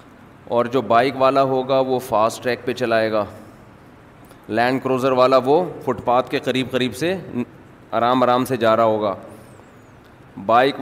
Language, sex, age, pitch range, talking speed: Urdu, male, 30-49, 120-145 Hz, 155 wpm